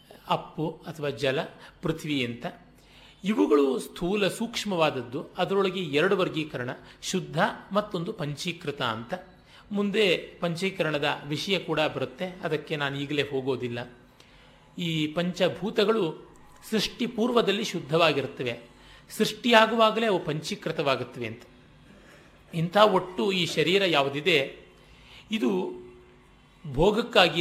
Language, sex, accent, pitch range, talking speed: Kannada, male, native, 140-185 Hz, 90 wpm